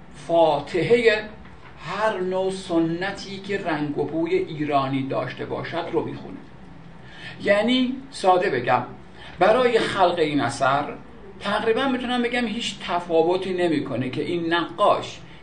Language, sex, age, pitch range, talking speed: Persian, male, 50-69, 155-205 Hz, 115 wpm